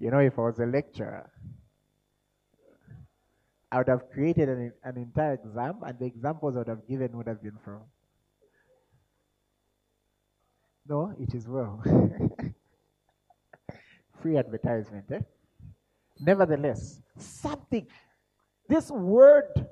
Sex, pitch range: male, 120-155 Hz